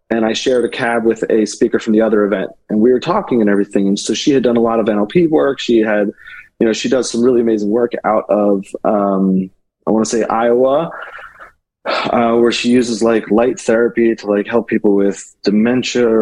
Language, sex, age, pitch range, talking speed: English, male, 30-49, 105-125 Hz, 220 wpm